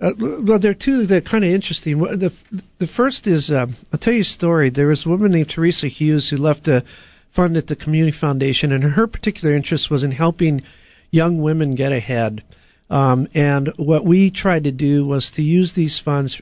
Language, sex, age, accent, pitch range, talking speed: English, male, 50-69, American, 135-165 Hz, 210 wpm